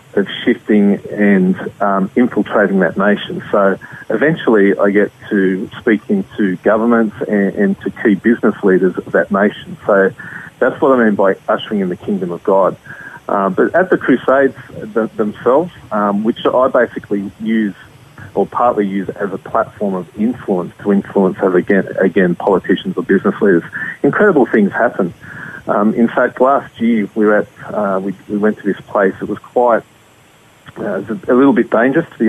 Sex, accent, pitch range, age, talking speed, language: male, Australian, 100-115 Hz, 30-49, 175 wpm, English